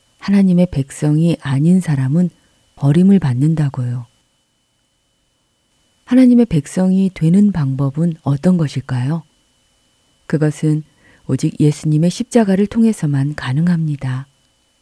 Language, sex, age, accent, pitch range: Korean, female, 40-59, native, 140-180 Hz